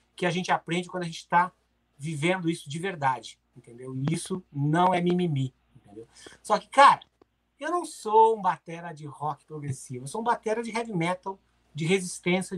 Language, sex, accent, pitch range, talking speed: Portuguese, male, Brazilian, 160-195 Hz, 185 wpm